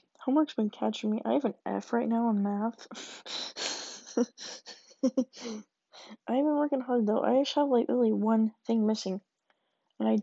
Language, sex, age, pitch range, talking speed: English, female, 20-39, 215-265 Hz, 160 wpm